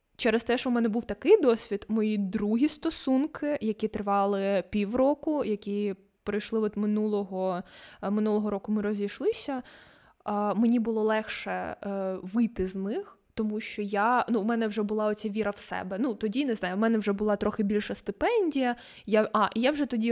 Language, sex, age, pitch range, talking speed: Ukrainian, female, 20-39, 205-230 Hz, 165 wpm